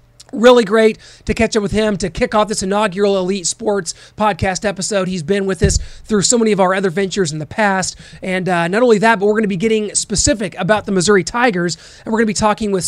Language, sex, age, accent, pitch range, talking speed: English, male, 30-49, American, 185-220 Hz, 245 wpm